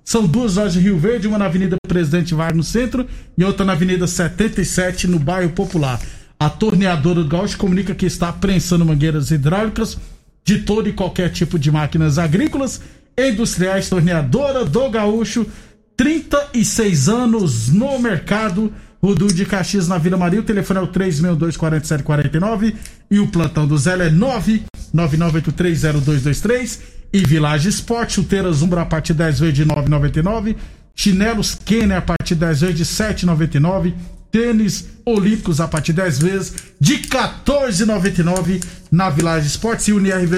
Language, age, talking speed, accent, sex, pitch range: Portuguese, 50-69, 155 wpm, Brazilian, male, 165-215 Hz